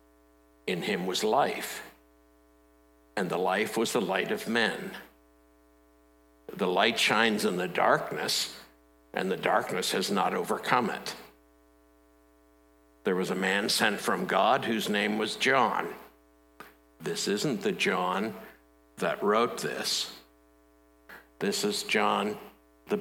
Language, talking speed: English, 125 wpm